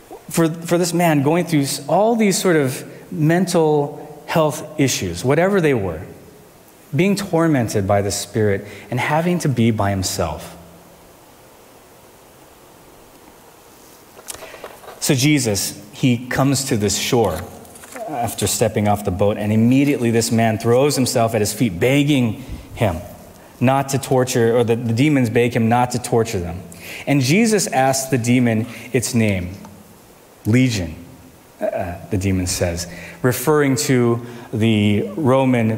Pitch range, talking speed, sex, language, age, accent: 105-140 Hz, 130 wpm, male, English, 30-49, American